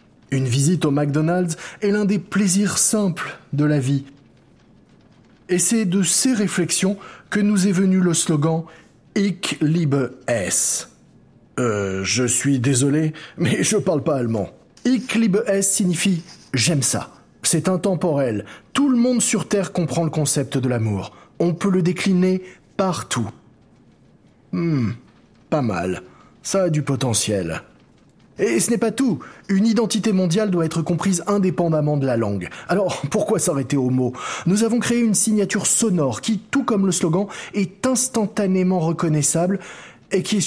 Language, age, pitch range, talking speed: French, 20-39, 145-200 Hz, 150 wpm